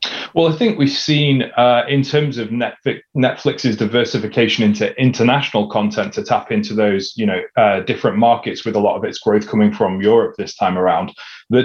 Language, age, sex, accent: English, 30-49, male, British